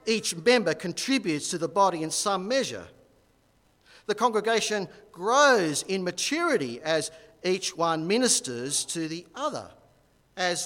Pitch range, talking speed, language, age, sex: 160-225 Hz, 125 wpm, English, 50-69, male